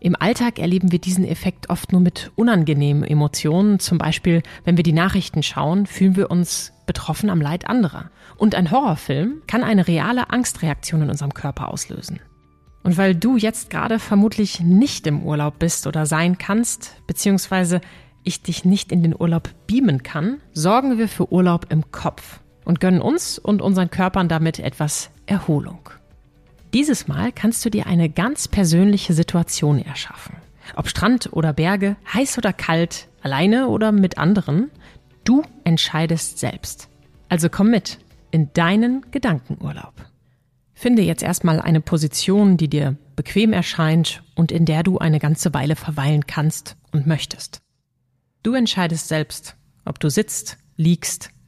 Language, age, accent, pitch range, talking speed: German, 30-49, German, 155-200 Hz, 150 wpm